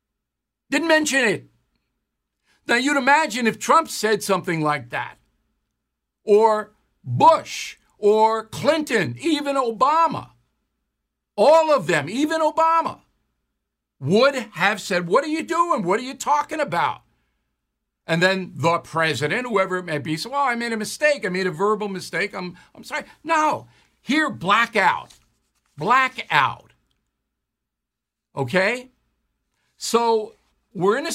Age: 60-79